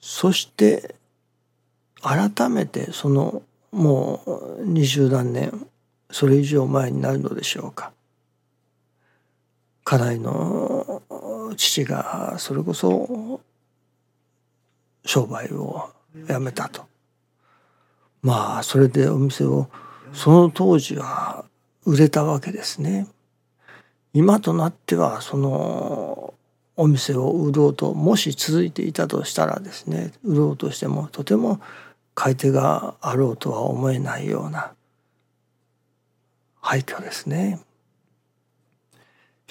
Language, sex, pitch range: Japanese, male, 115-160 Hz